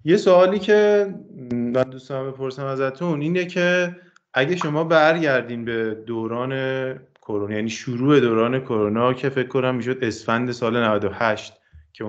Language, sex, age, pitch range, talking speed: Persian, male, 20-39, 110-140 Hz, 135 wpm